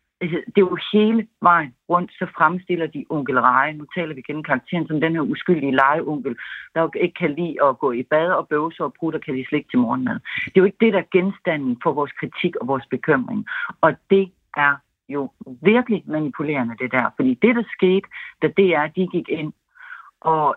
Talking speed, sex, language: 200 wpm, female, Danish